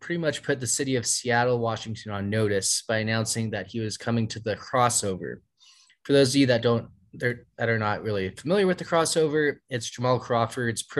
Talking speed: 195 wpm